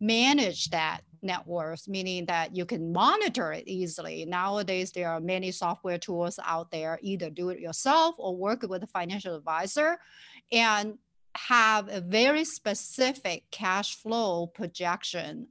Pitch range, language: 175-230 Hz, English